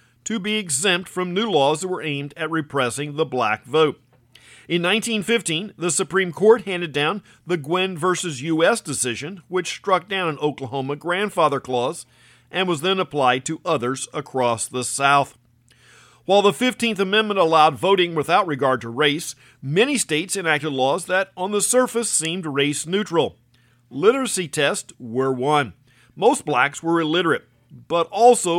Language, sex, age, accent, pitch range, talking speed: English, male, 50-69, American, 130-185 Hz, 150 wpm